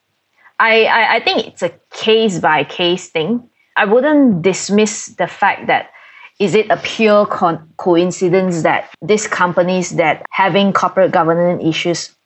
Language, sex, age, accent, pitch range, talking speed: English, female, 20-39, Malaysian, 165-205 Hz, 135 wpm